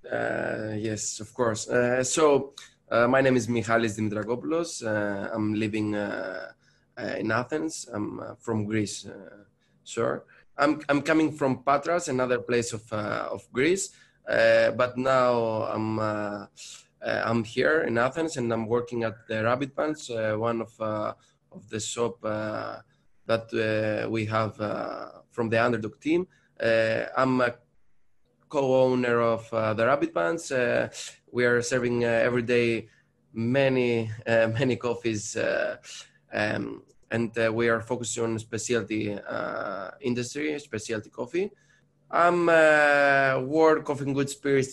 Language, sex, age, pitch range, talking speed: English, male, 20-39, 110-135 Hz, 150 wpm